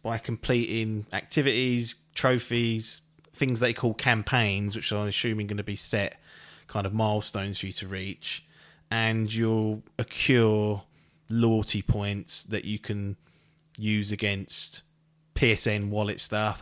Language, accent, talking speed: English, British, 130 wpm